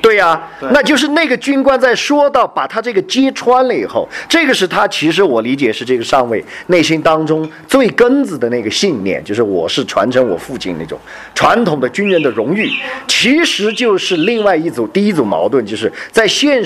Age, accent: 40-59, native